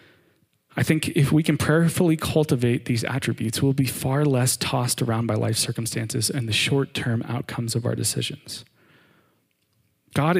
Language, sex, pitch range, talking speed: English, male, 120-145 Hz, 150 wpm